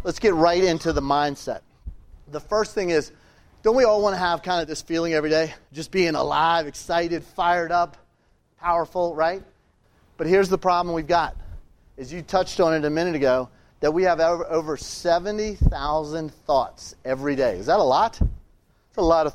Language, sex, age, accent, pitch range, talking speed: English, male, 30-49, American, 150-175 Hz, 185 wpm